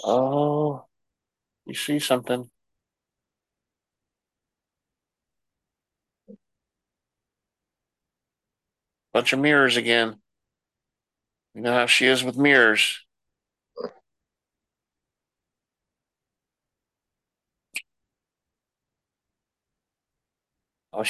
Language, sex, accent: English, male, American